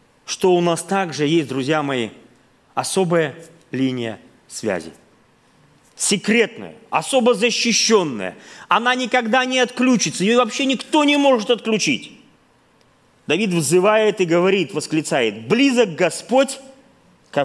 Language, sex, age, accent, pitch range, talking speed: Russian, male, 30-49, native, 140-205 Hz, 105 wpm